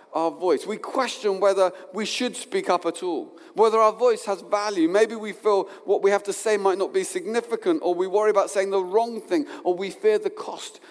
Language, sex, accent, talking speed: English, male, British, 225 wpm